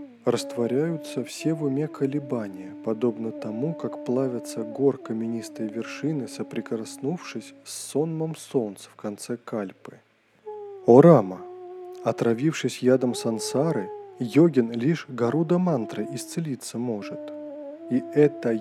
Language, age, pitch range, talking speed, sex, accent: Russian, 20-39, 120-175 Hz, 105 wpm, male, native